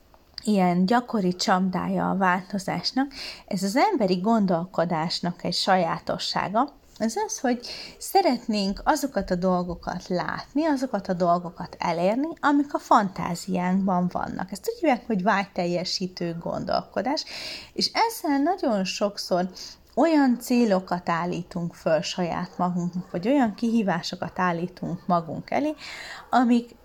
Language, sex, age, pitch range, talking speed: Hungarian, female, 30-49, 175-250 Hz, 110 wpm